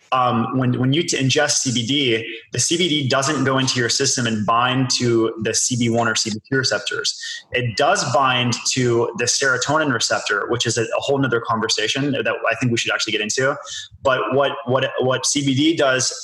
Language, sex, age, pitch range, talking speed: English, male, 20-39, 120-140 Hz, 185 wpm